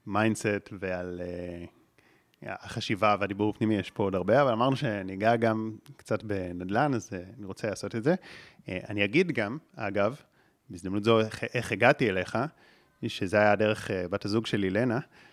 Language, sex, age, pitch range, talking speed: Hebrew, male, 30-49, 100-135 Hz, 170 wpm